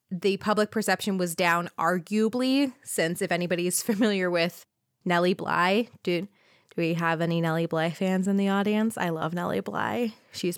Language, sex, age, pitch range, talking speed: English, female, 20-39, 170-205 Hz, 165 wpm